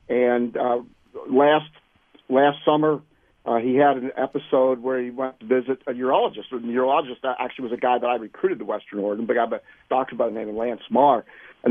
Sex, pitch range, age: male, 120-145 Hz, 50-69